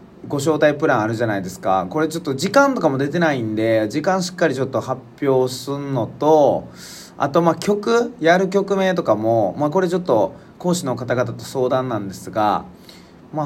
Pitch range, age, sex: 120-175 Hz, 20-39, male